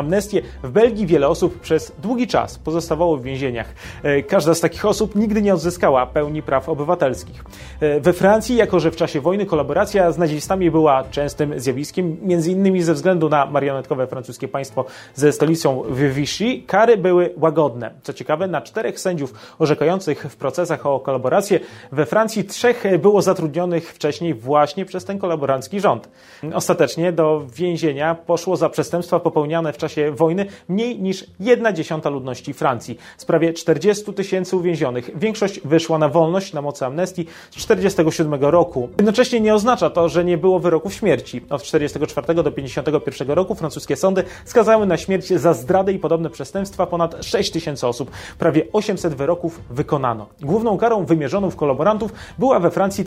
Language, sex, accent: Polish, male, native